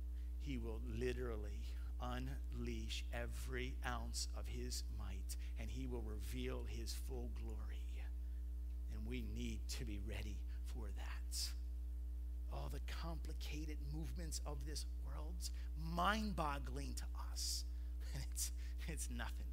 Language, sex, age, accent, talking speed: English, male, 50-69, American, 115 wpm